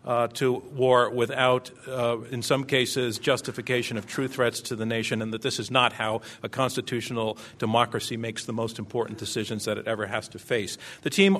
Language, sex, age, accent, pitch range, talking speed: English, male, 50-69, American, 120-145 Hz, 195 wpm